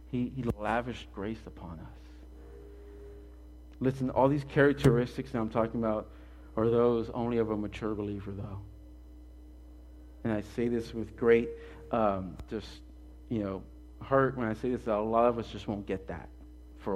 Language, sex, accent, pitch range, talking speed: English, male, American, 95-140 Hz, 165 wpm